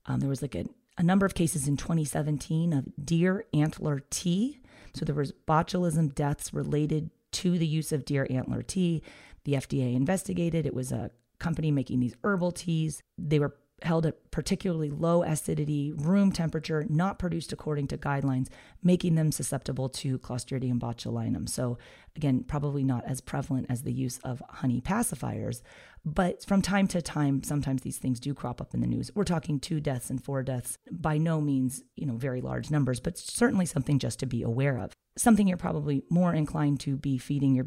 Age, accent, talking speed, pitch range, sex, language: 30-49, American, 185 wpm, 130-170 Hz, female, English